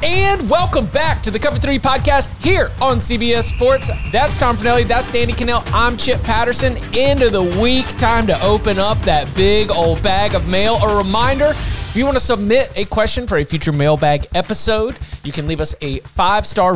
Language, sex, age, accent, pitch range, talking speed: English, male, 30-49, American, 155-210 Hz, 195 wpm